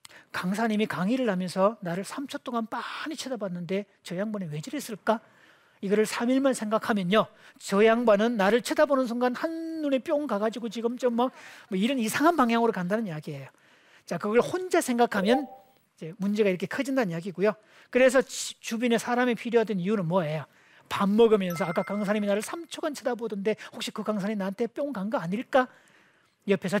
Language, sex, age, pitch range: Korean, male, 40-59, 200-260 Hz